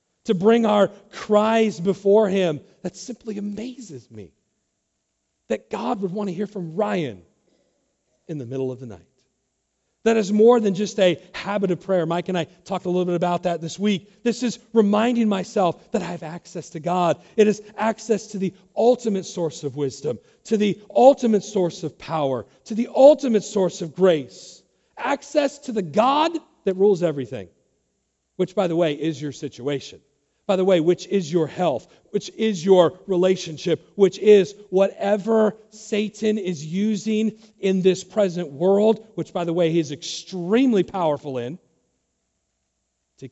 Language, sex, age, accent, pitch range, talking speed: English, male, 40-59, American, 150-210 Hz, 165 wpm